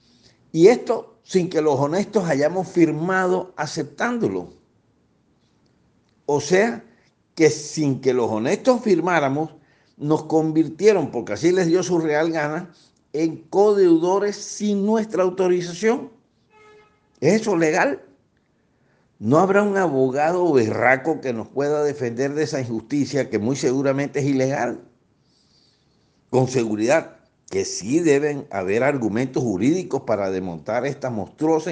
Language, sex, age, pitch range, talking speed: Spanish, male, 60-79, 130-185 Hz, 120 wpm